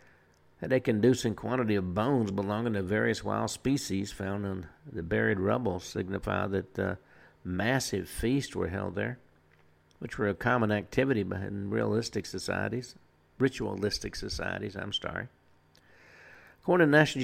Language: English